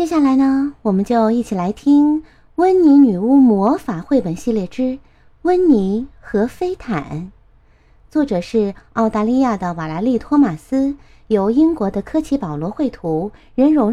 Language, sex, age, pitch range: Chinese, female, 30-49, 210-315 Hz